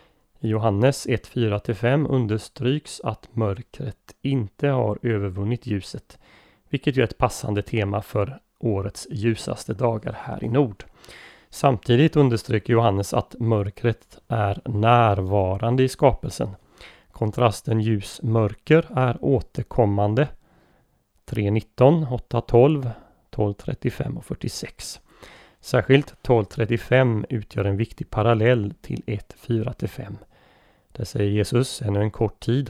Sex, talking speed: male, 100 wpm